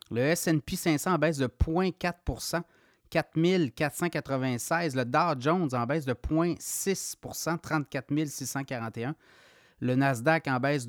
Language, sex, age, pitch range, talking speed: French, male, 30-49, 135-170 Hz, 120 wpm